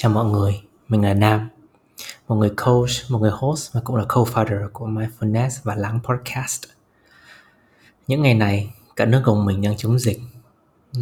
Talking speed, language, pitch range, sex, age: 175 wpm, Vietnamese, 110-125 Hz, male, 20-39